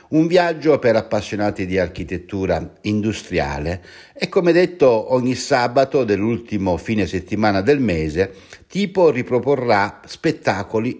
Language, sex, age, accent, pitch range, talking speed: Italian, male, 60-79, native, 95-140 Hz, 110 wpm